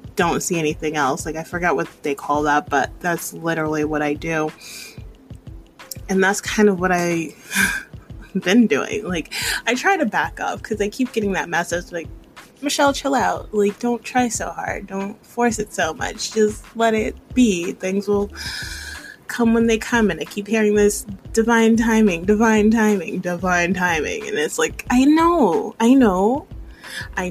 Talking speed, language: 175 wpm, English